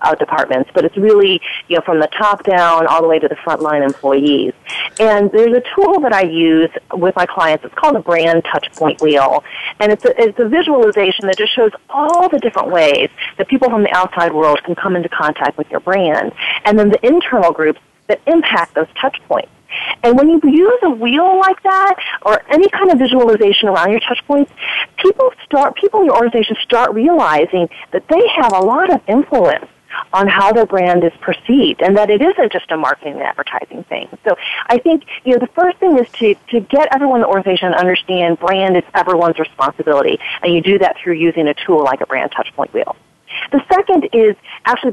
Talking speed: 210 wpm